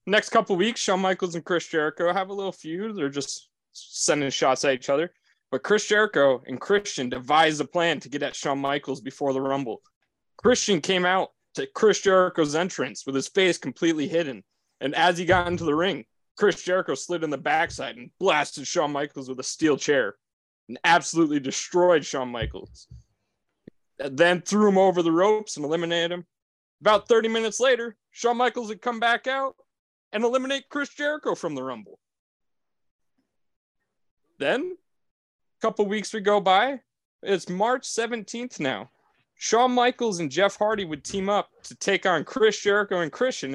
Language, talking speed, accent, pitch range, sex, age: English, 170 wpm, American, 160-220 Hz, male, 20-39